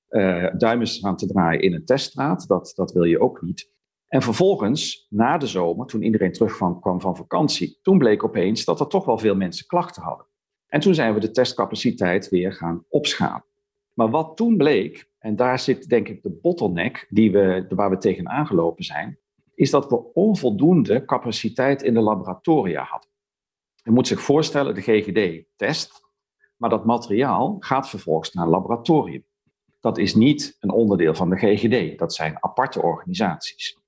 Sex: male